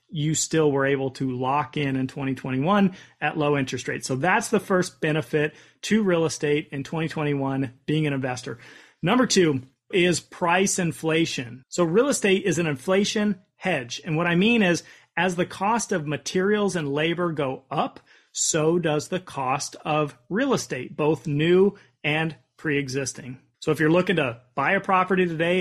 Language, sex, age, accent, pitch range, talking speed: English, male, 30-49, American, 145-180 Hz, 170 wpm